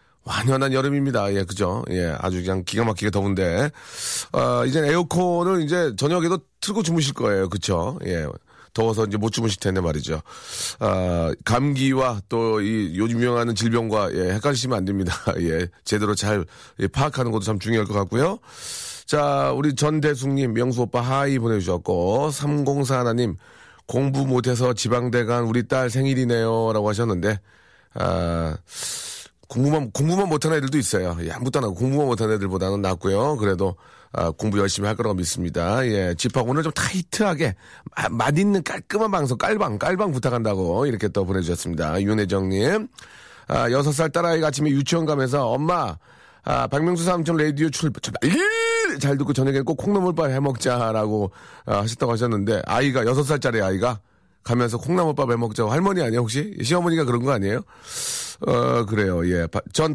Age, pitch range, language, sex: 30-49, 100-150 Hz, Korean, male